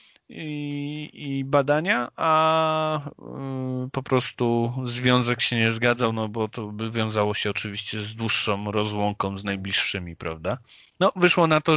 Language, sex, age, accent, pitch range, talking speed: Polish, male, 30-49, native, 115-135 Hz, 140 wpm